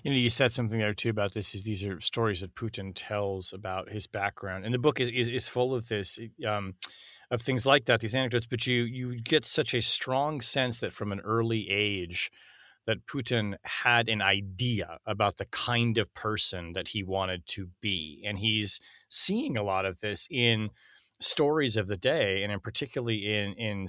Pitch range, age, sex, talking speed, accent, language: 100-120 Hz, 30-49, male, 200 wpm, American, English